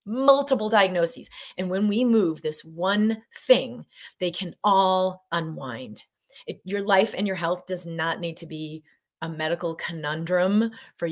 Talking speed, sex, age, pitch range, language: 145 wpm, female, 30-49, 165-195 Hz, English